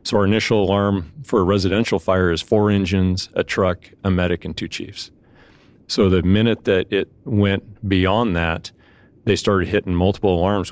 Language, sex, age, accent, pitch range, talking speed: English, male, 40-59, American, 90-105 Hz, 175 wpm